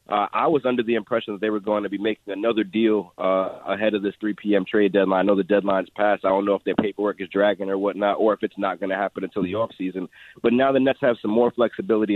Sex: male